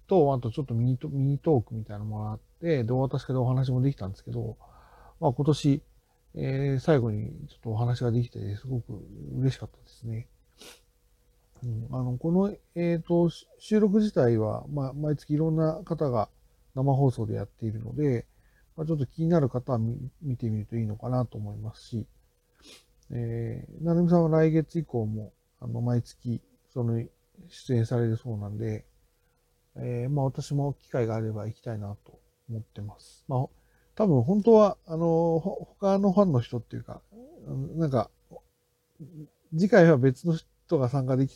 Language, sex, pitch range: Japanese, male, 115-160 Hz